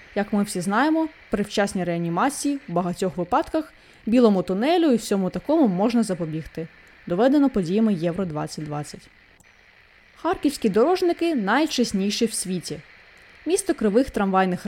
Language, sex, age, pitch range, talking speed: Ukrainian, female, 20-39, 185-290 Hz, 115 wpm